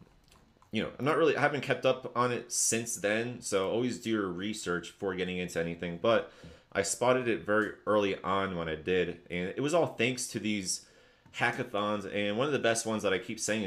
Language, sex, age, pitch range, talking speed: English, male, 30-49, 90-115 Hz, 225 wpm